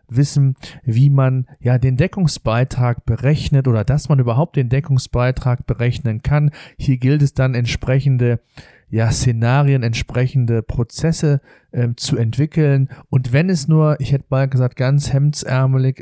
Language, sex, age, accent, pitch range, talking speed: German, male, 40-59, German, 130-150 Hz, 140 wpm